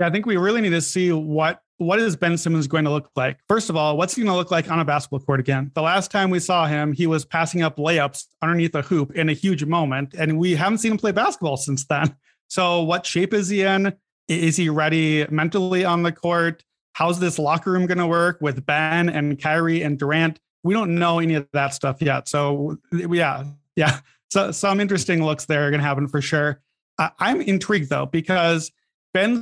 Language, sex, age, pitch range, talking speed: English, male, 30-49, 155-185 Hz, 225 wpm